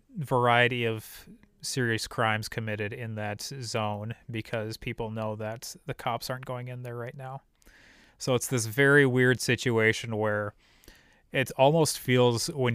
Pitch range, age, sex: 110-130 Hz, 30-49, male